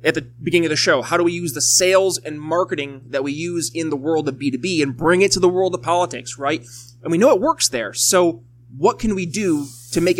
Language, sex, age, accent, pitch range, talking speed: English, male, 20-39, American, 125-180 Hz, 260 wpm